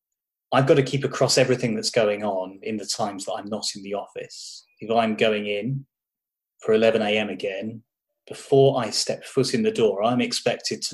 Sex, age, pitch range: male, 20-39, 110-155 Hz